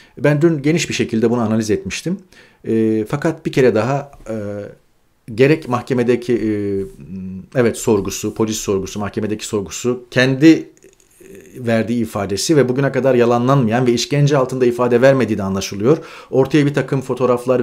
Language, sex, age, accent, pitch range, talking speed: Turkish, male, 40-59, native, 115-150 Hz, 140 wpm